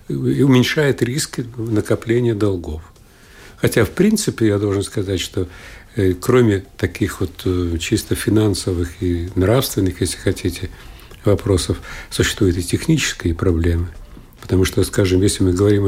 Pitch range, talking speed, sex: 95-110 Hz, 120 wpm, male